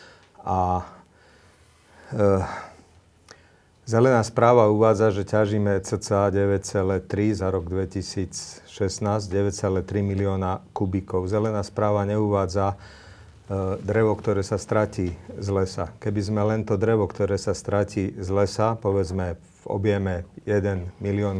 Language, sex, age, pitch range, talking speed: Slovak, male, 40-59, 95-105 Hz, 110 wpm